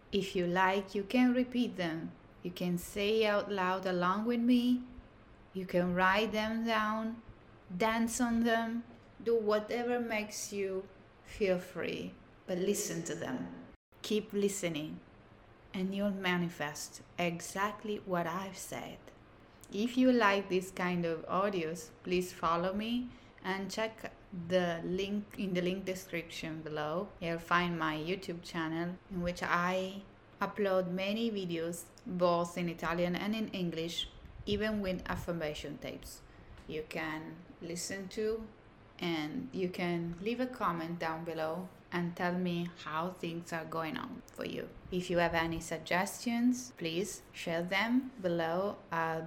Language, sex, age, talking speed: Italian, female, 20-39, 140 wpm